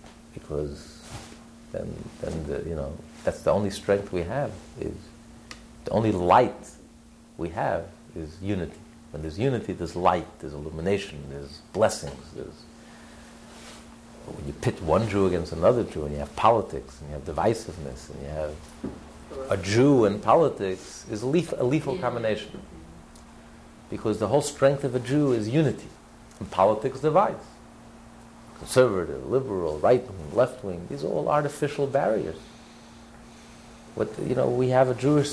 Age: 50-69